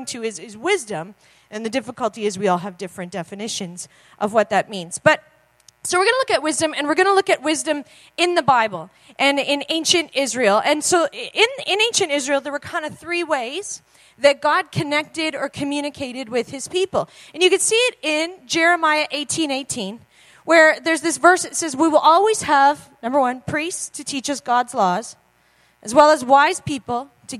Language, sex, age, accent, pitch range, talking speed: English, female, 40-59, American, 250-325 Hz, 200 wpm